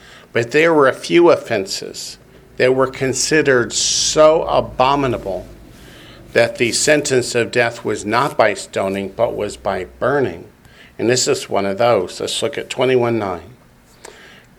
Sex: male